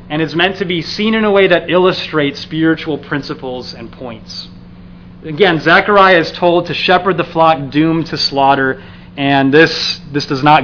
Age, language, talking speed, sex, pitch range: 30-49, English, 175 wpm, male, 135-175 Hz